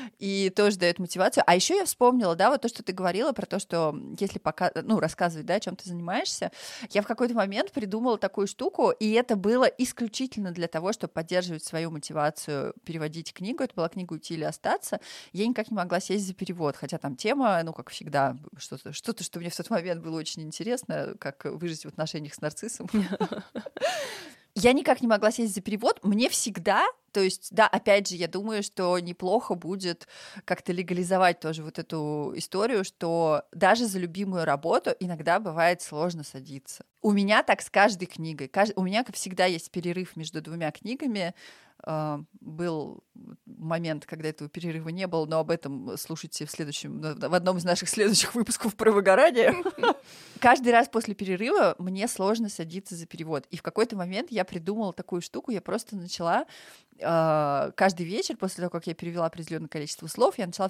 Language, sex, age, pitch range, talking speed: Russian, female, 30-49, 165-215 Hz, 180 wpm